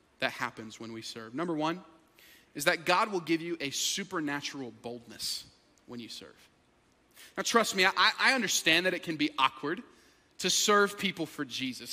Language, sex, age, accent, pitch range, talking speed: English, male, 30-49, American, 165-240 Hz, 175 wpm